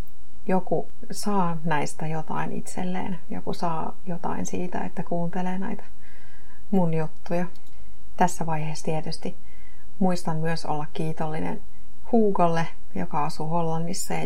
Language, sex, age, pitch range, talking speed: Finnish, female, 30-49, 160-185 Hz, 110 wpm